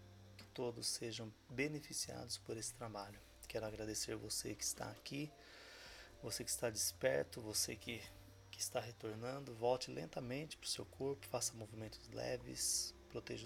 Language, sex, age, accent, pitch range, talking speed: Portuguese, male, 20-39, Brazilian, 110-125 Hz, 140 wpm